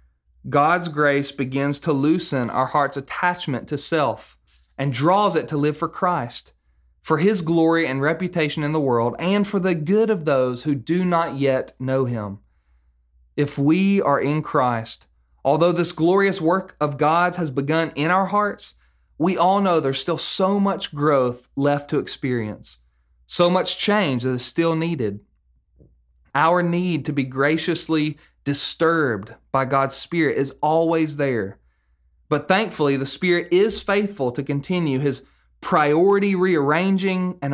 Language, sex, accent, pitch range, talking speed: English, male, American, 120-170 Hz, 150 wpm